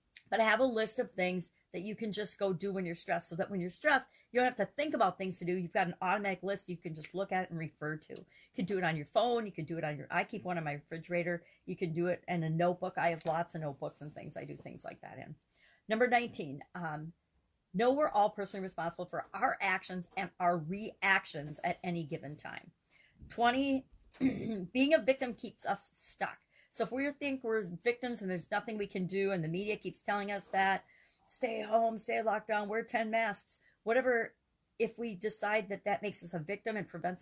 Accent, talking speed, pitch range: American, 235 wpm, 175-225 Hz